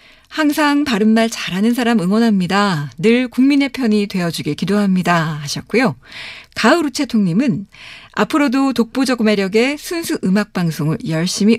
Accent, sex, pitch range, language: native, female, 185-250 Hz, Korean